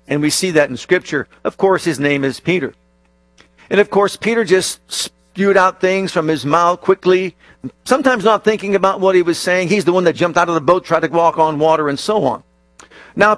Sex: male